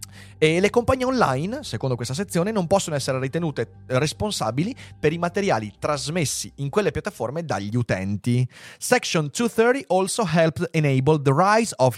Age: 30-49